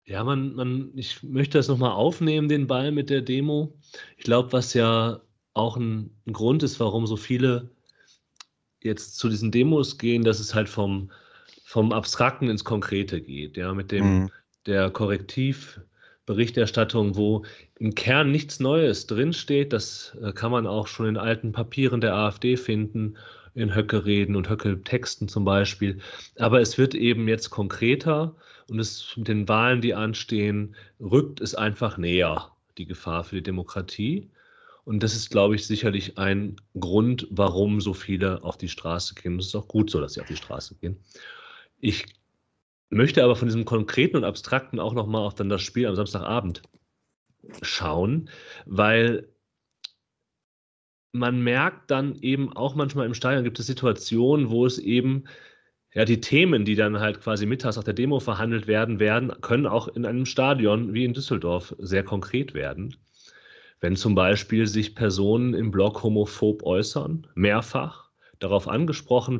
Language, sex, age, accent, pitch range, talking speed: German, male, 30-49, German, 105-125 Hz, 160 wpm